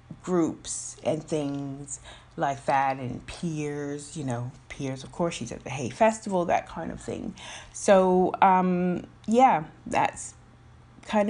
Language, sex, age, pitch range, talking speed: English, female, 30-49, 170-230 Hz, 140 wpm